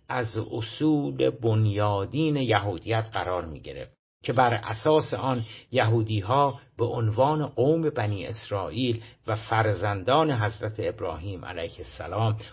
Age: 50-69